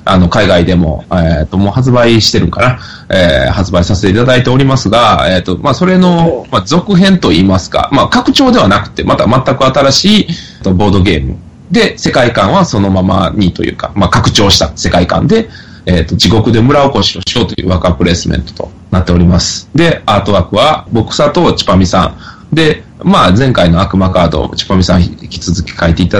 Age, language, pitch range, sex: 20-39, Japanese, 90-120 Hz, male